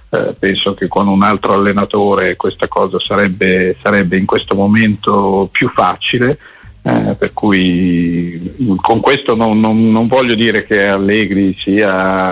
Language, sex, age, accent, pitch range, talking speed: Italian, male, 50-69, native, 95-110 Hz, 135 wpm